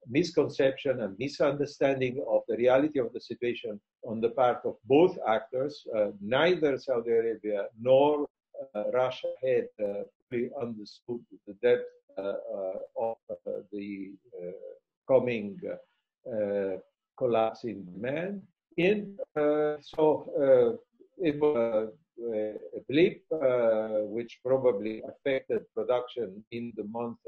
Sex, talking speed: male, 115 wpm